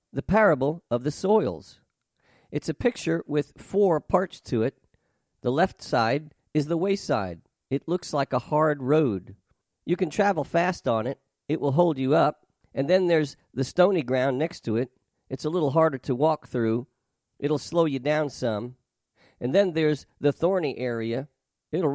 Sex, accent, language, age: male, American, English, 50-69